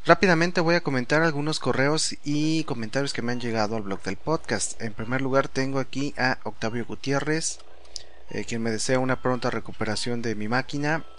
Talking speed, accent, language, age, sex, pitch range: 180 wpm, Mexican, English, 30-49, male, 110-140 Hz